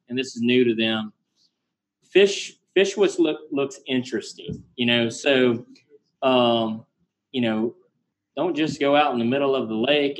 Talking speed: 165 wpm